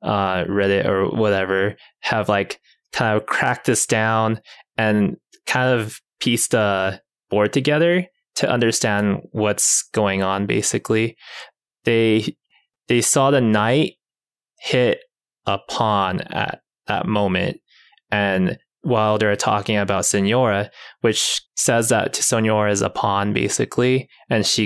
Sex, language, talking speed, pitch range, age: male, English, 125 wpm, 105-135 Hz, 20-39